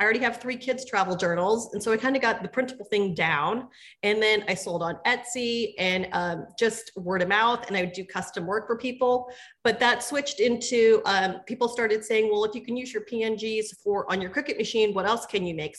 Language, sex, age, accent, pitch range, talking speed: English, female, 30-49, American, 205-245 Hz, 235 wpm